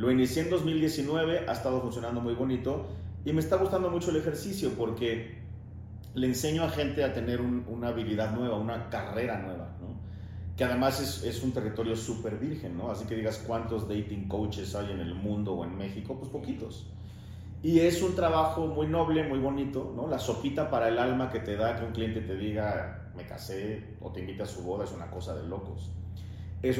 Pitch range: 100-130 Hz